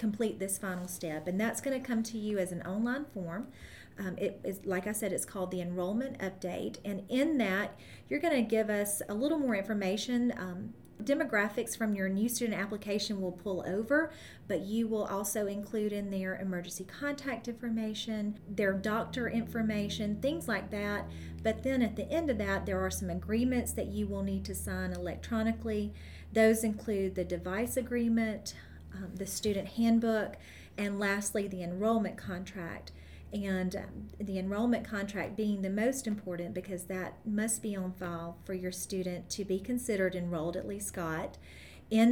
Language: English